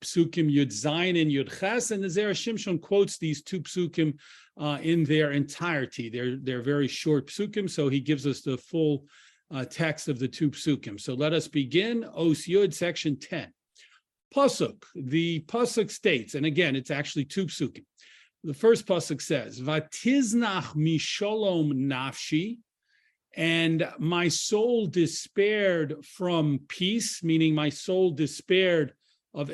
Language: English